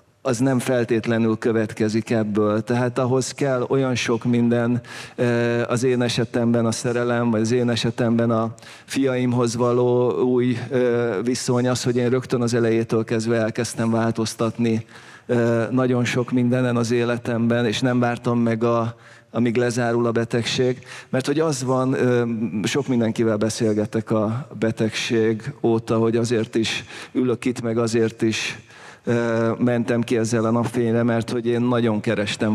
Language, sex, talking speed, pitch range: Hungarian, male, 140 wpm, 110-125 Hz